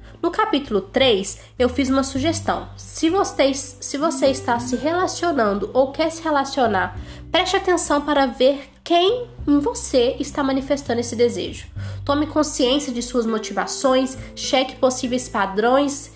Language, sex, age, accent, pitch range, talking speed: Portuguese, female, 10-29, Brazilian, 230-295 Hz, 135 wpm